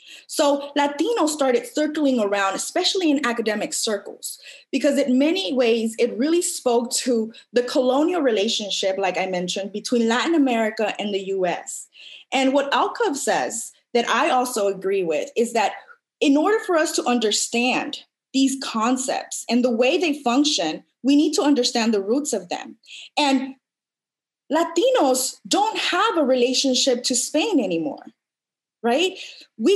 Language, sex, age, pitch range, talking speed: English, female, 20-39, 235-300 Hz, 145 wpm